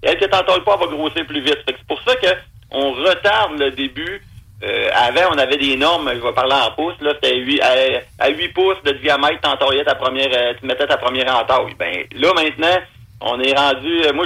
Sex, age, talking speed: male, 40-59, 225 wpm